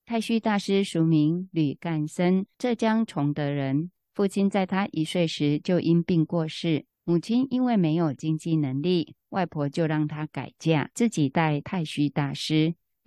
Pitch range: 150-190 Hz